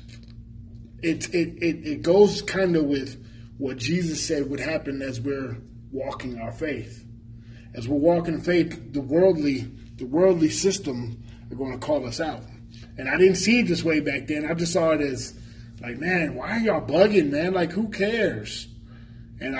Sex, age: male, 20-39